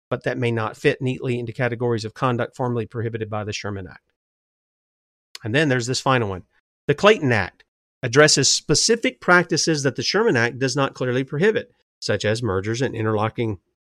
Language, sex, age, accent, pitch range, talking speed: English, male, 40-59, American, 115-155 Hz, 175 wpm